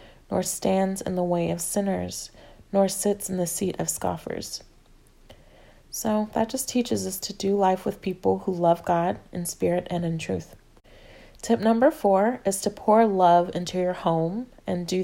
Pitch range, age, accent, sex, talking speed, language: 175-205 Hz, 20-39, American, female, 175 wpm, English